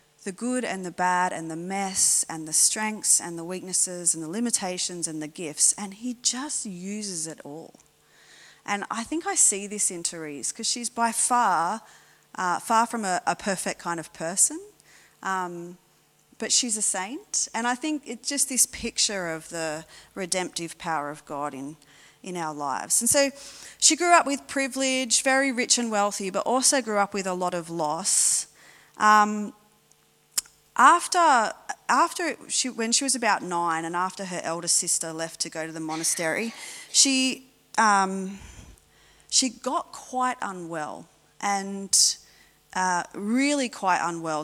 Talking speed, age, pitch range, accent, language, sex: 160 wpm, 30-49, 165-235 Hz, Australian, English, female